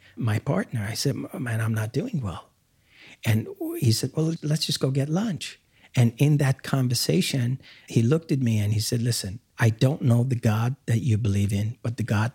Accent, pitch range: American, 110-130 Hz